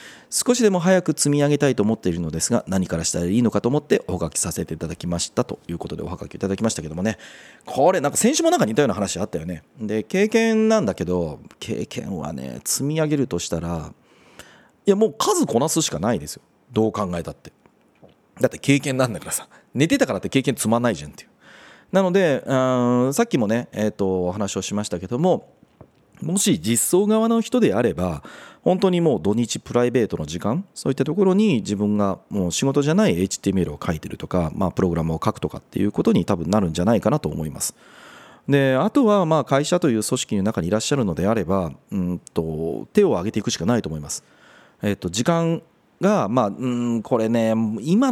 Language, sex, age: Japanese, male, 40-59